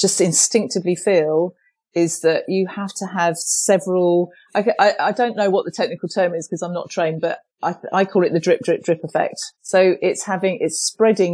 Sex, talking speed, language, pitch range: female, 205 wpm, English, 165-195 Hz